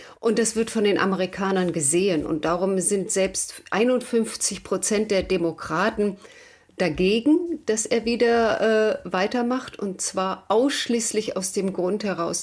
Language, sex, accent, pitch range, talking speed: German, female, German, 195-245 Hz, 135 wpm